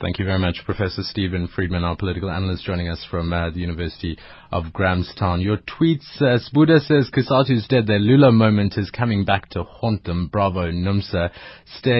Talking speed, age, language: 185 wpm, 30-49, English